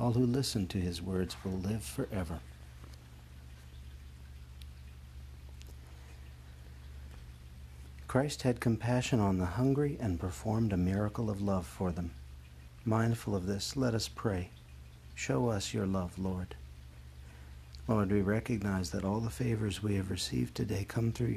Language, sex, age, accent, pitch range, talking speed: English, male, 60-79, American, 65-105 Hz, 130 wpm